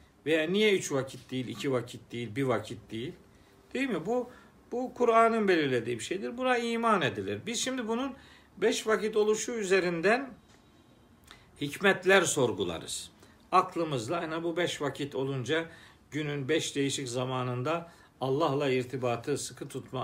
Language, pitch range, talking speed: Turkish, 130-205 Hz, 135 wpm